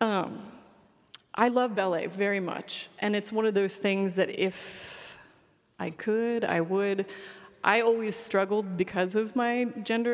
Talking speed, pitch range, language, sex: 150 wpm, 180-215 Hz, English, female